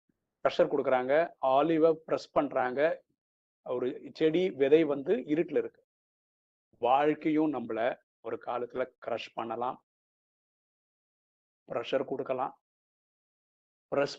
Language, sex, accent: Tamil, male, native